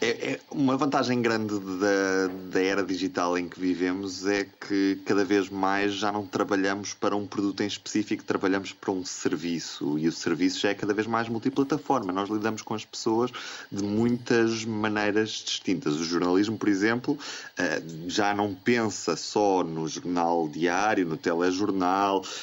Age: 20-39